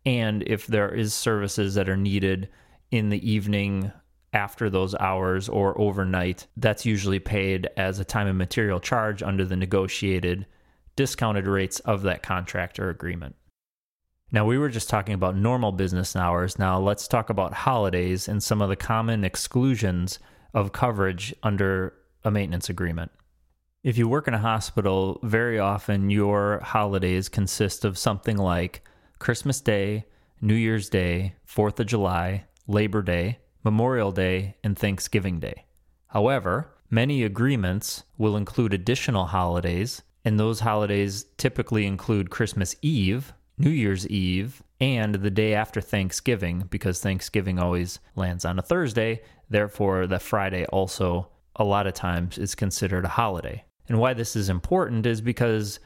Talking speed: 145 wpm